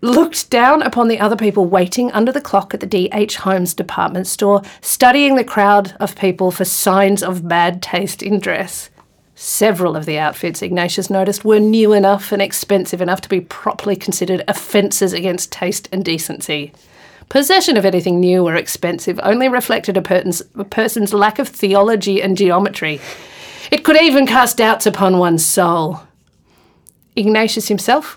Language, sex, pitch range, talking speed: English, female, 185-225 Hz, 160 wpm